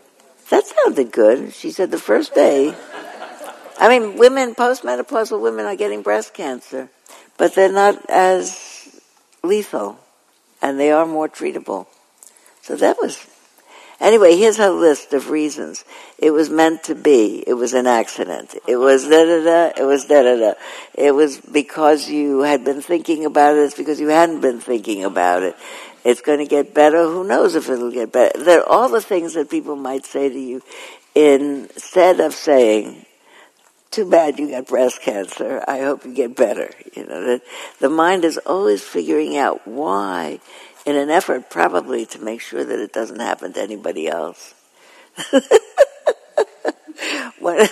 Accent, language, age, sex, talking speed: American, English, 60-79, female, 165 wpm